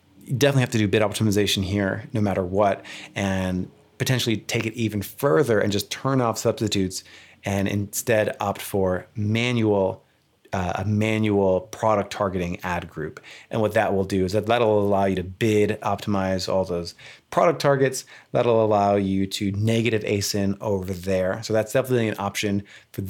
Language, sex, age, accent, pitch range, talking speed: English, male, 30-49, American, 100-115 Hz, 165 wpm